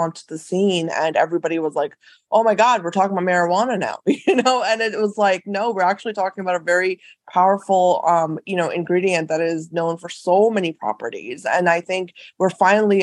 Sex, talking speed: female, 205 wpm